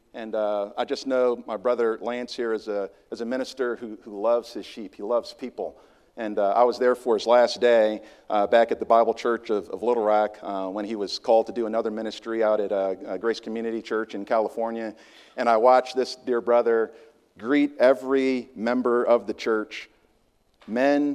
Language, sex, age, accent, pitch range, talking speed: English, male, 50-69, American, 110-125 Hz, 200 wpm